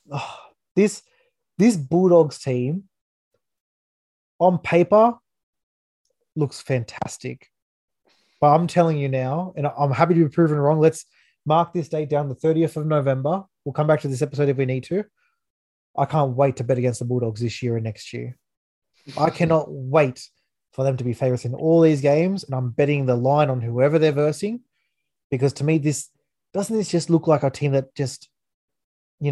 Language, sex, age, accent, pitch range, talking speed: English, male, 20-39, Australian, 125-160 Hz, 180 wpm